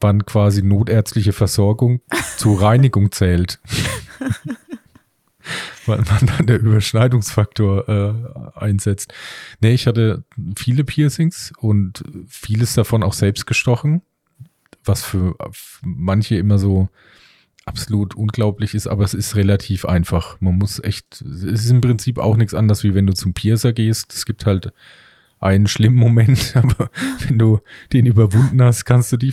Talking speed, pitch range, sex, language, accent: 140 wpm, 100-125 Hz, male, German, German